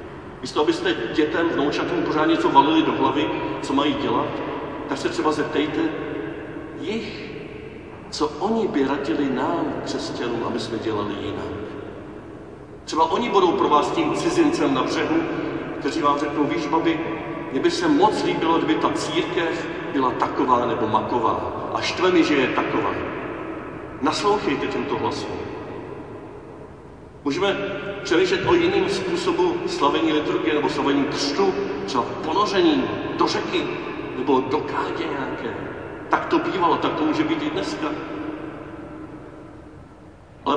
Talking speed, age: 135 wpm, 40-59